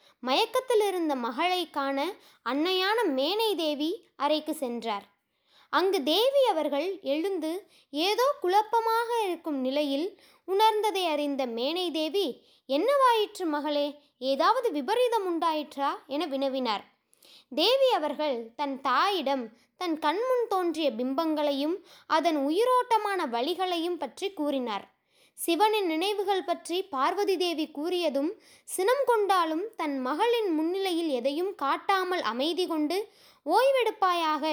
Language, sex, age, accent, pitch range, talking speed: Tamil, female, 20-39, native, 285-395 Hz, 95 wpm